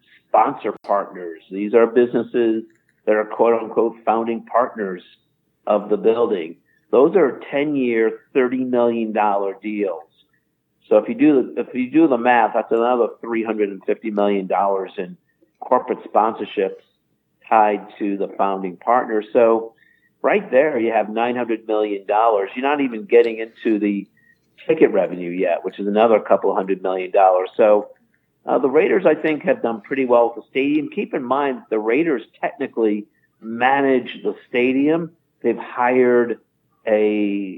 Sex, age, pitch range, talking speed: male, 50-69, 105-145 Hz, 155 wpm